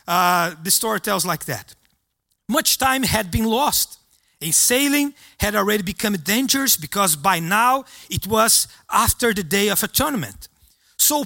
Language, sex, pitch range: English, male, 200-270 Hz